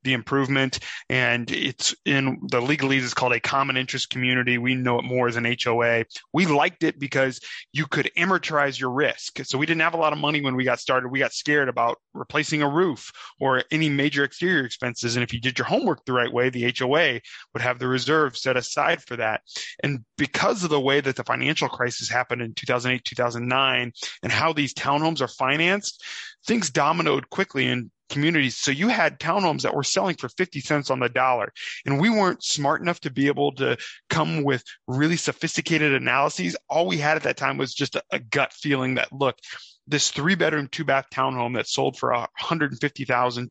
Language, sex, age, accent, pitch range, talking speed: English, male, 20-39, American, 125-155 Hz, 200 wpm